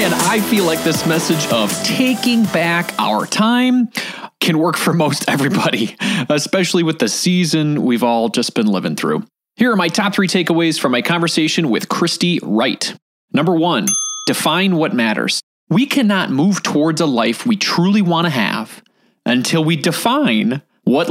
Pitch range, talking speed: 165-235 Hz, 165 wpm